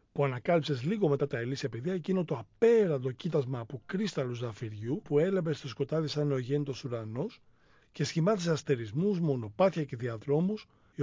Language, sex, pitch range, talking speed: Greek, male, 115-160 Hz, 160 wpm